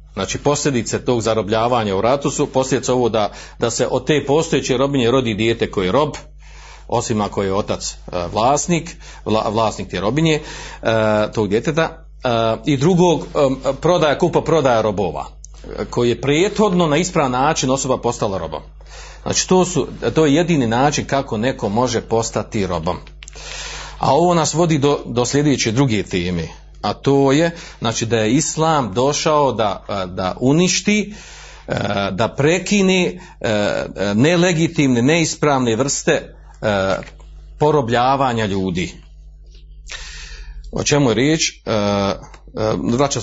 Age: 40-59